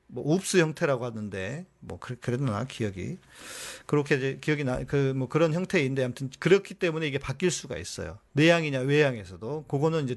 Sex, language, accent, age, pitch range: male, Korean, native, 40-59, 120-160 Hz